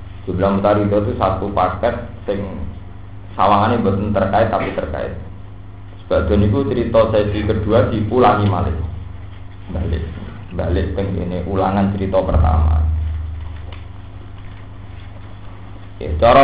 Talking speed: 90 wpm